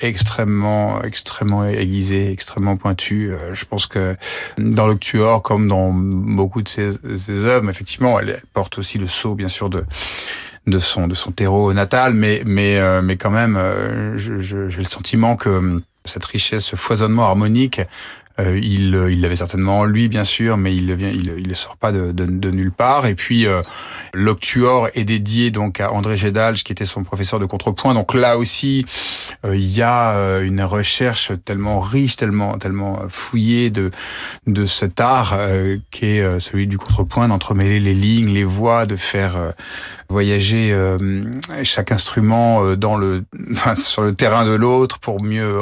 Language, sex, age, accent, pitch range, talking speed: French, male, 30-49, French, 95-110 Hz, 170 wpm